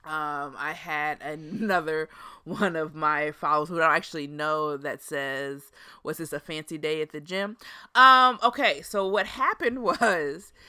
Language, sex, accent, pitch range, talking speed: English, female, American, 155-210 Hz, 155 wpm